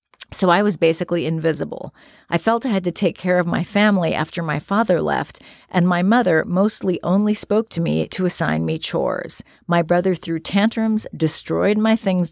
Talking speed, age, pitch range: 185 wpm, 40-59, 165-210 Hz